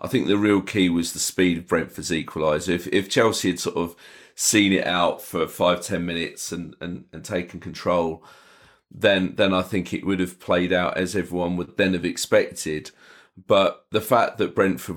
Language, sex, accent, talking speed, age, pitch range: English, male, British, 195 wpm, 30-49, 85-100 Hz